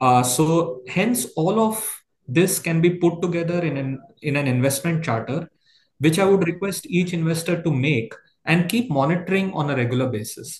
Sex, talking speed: male, 175 wpm